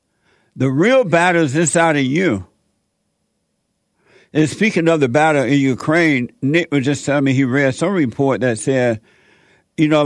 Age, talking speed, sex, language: 60-79, 160 wpm, male, English